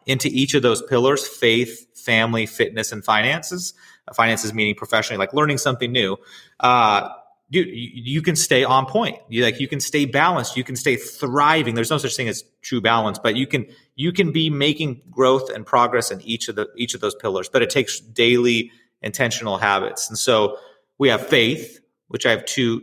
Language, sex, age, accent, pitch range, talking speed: English, male, 30-49, American, 110-135 Hz, 195 wpm